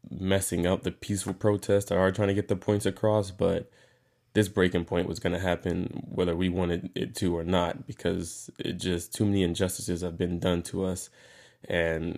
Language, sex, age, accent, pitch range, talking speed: English, male, 20-39, American, 85-95 Hz, 190 wpm